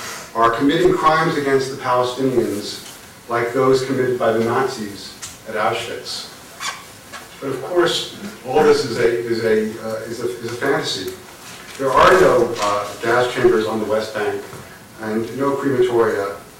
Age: 40-59